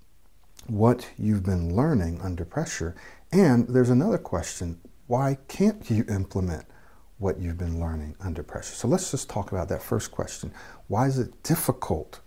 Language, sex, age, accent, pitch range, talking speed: English, male, 60-79, American, 80-115 Hz, 155 wpm